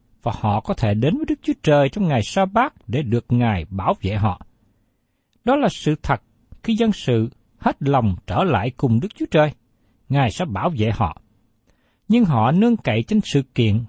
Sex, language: male, Vietnamese